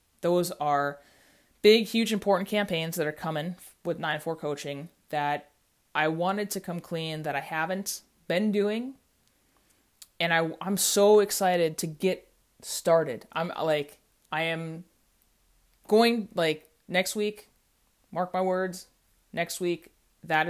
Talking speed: 135 wpm